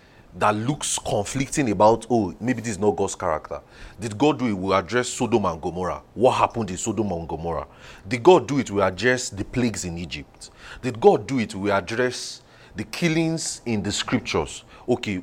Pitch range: 105-135 Hz